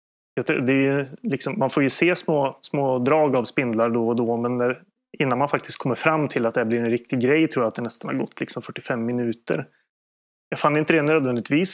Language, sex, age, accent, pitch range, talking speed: Swedish, male, 30-49, native, 115-145 Hz, 225 wpm